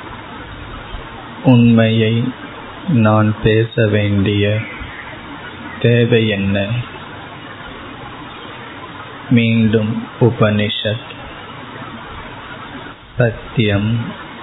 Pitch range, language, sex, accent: 100-115 Hz, Tamil, male, native